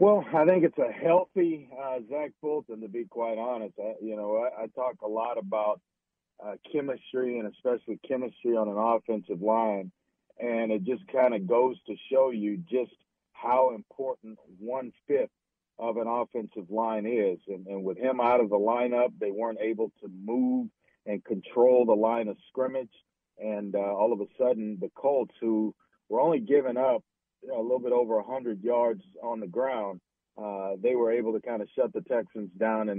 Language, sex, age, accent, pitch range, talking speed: English, male, 50-69, American, 110-130 Hz, 185 wpm